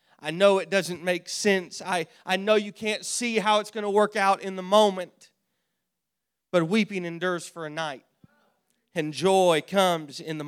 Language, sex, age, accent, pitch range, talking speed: English, male, 30-49, American, 175-210 Hz, 185 wpm